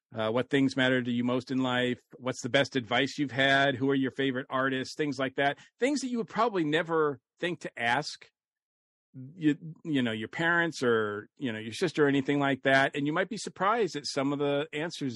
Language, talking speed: English, 220 wpm